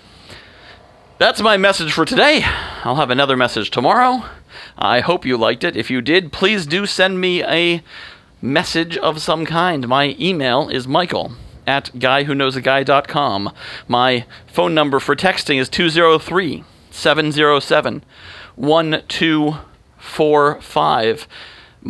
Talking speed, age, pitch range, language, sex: 105 wpm, 40-59, 110-155 Hz, English, male